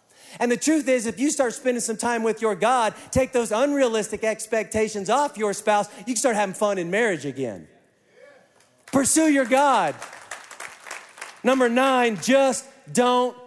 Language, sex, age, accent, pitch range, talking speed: English, male, 40-59, American, 155-240 Hz, 155 wpm